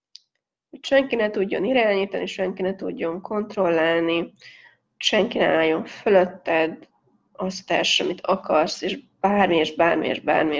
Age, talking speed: 20-39, 130 wpm